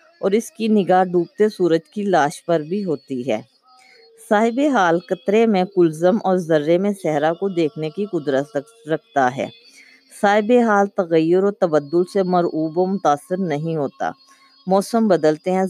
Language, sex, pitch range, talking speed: Urdu, female, 165-215 Hz, 155 wpm